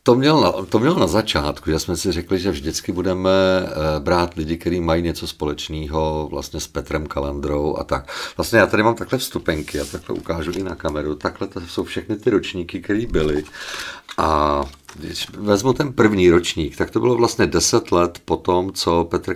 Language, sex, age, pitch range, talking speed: Czech, male, 50-69, 80-95 Hz, 190 wpm